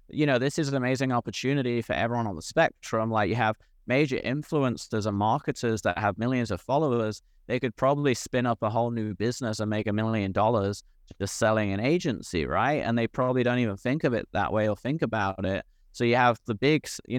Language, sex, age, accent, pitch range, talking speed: English, male, 30-49, British, 105-125 Hz, 220 wpm